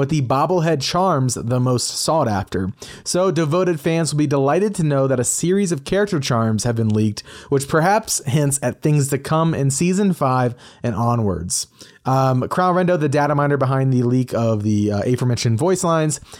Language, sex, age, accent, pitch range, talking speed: English, male, 30-49, American, 125-170 Hz, 190 wpm